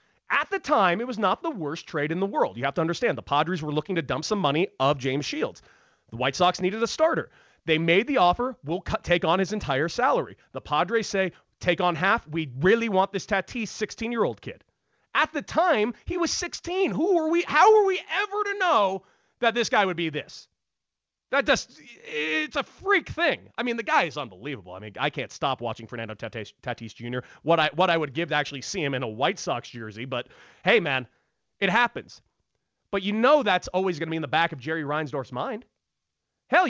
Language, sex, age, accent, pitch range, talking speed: English, male, 30-49, American, 150-230 Hz, 220 wpm